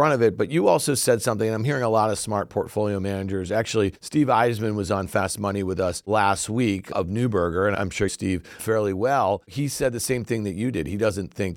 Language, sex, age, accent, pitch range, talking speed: English, male, 50-69, American, 105-135 Hz, 240 wpm